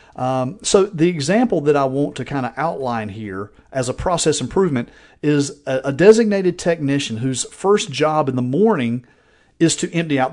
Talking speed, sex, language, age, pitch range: 180 wpm, male, English, 40-59, 125-170 Hz